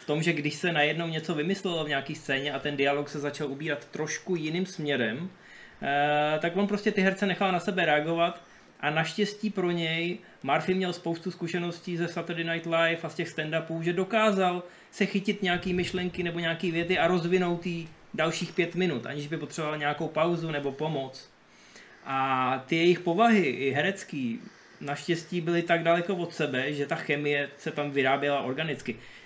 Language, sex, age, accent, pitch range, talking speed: Czech, male, 20-39, native, 140-170 Hz, 175 wpm